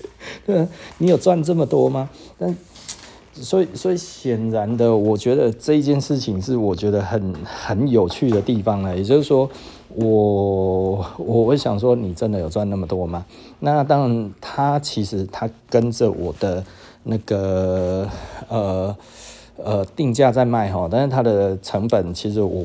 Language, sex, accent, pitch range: Chinese, male, native, 100-135 Hz